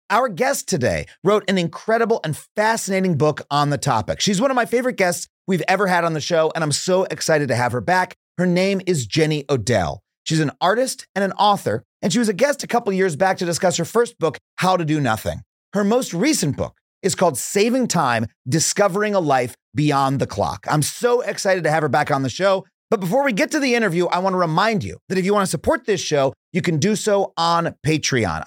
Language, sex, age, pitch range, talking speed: English, male, 30-49, 145-200 Hz, 235 wpm